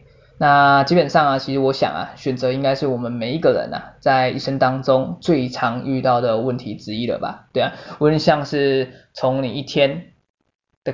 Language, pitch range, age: Chinese, 130-150 Hz, 20-39